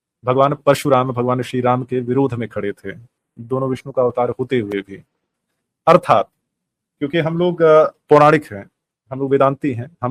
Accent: native